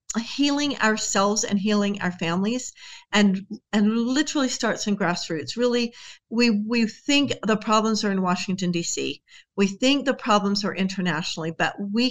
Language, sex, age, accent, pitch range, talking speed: English, female, 50-69, American, 180-220 Hz, 150 wpm